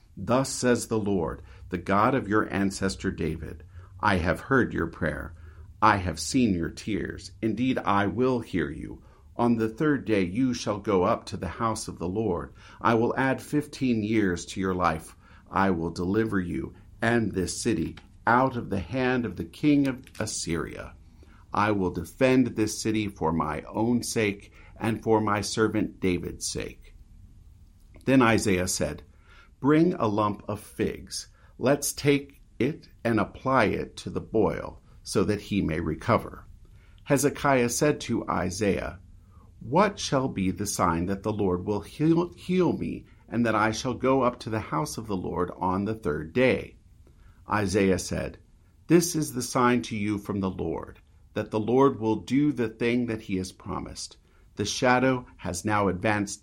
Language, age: English, 50-69